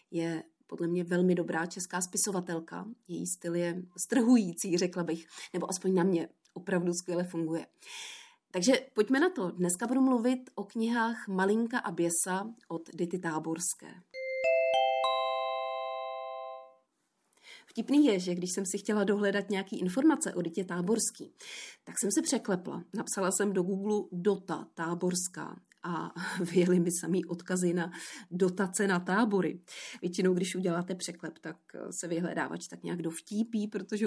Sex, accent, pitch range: female, native, 175-215 Hz